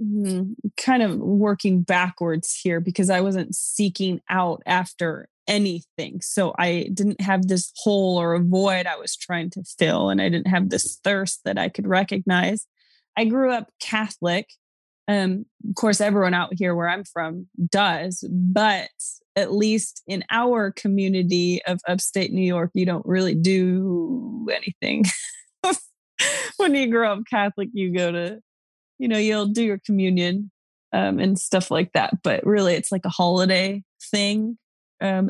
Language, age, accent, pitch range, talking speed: English, 20-39, American, 180-210 Hz, 155 wpm